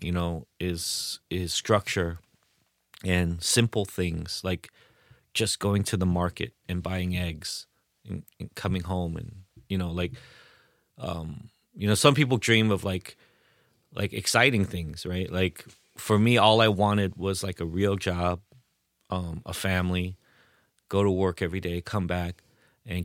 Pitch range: 90-105 Hz